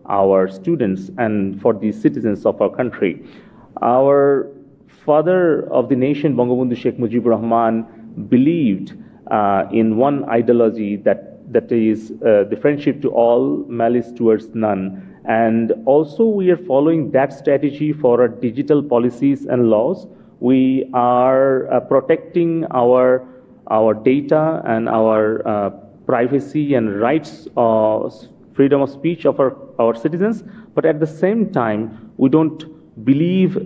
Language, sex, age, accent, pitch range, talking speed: English, male, 40-59, Indian, 115-140 Hz, 135 wpm